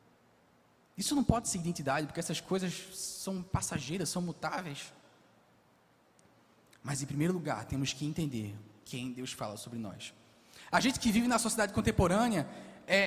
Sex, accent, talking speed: male, Brazilian, 145 wpm